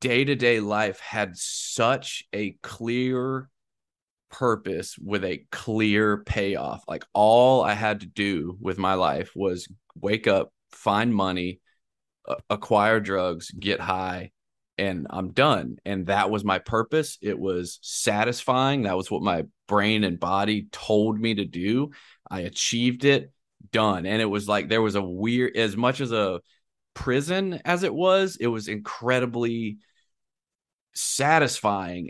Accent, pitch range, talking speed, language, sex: American, 95-120 Hz, 140 wpm, English, male